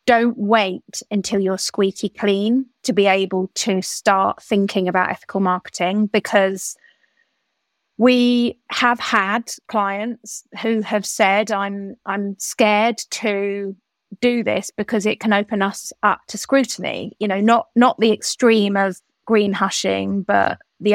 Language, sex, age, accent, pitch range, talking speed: English, female, 30-49, British, 200-230 Hz, 140 wpm